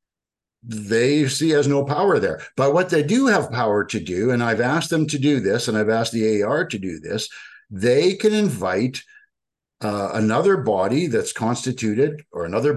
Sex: male